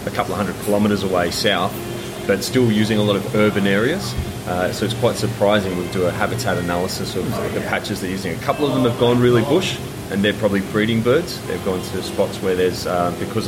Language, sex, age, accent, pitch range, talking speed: English, male, 30-49, Australian, 95-115 Hz, 225 wpm